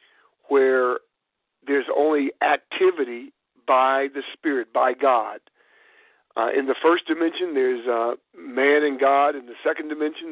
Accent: American